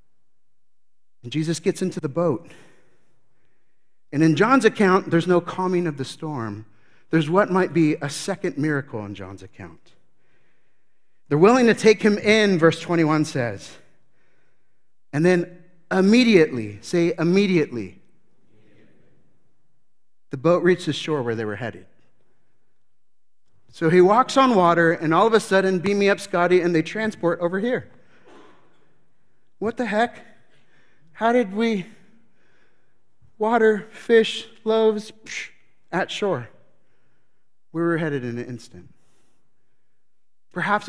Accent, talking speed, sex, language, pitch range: American, 130 wpm, male, English, 140-200 Hz